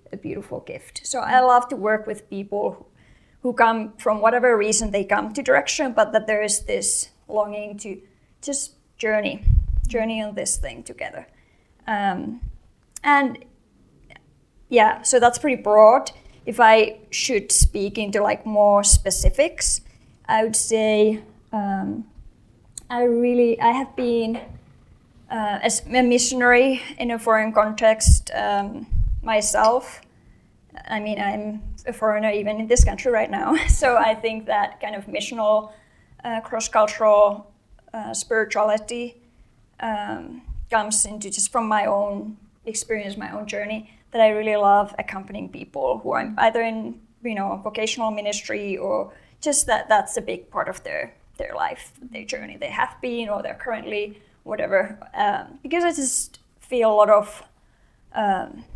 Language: English